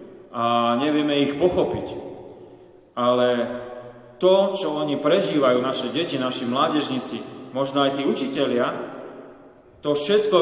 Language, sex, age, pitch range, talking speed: Slovak, male, 30-49, 130-155 Hz, 110 wpm